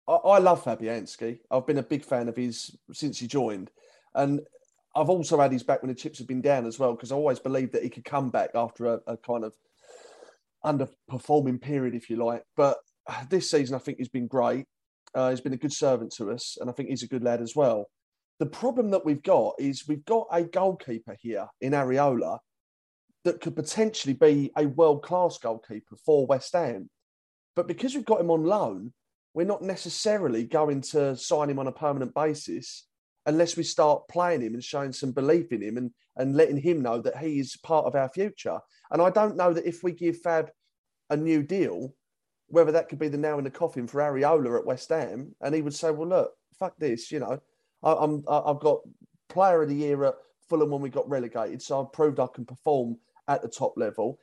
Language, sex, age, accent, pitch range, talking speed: English, male, 30-49, British, 130-165 Hz, 215 wpm